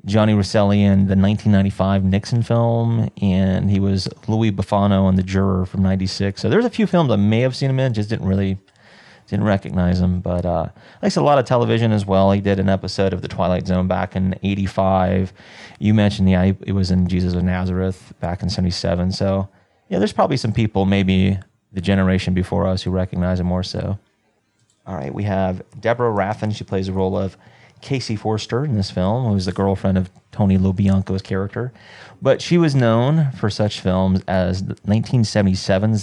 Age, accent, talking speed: 30-49, American, 190 wpm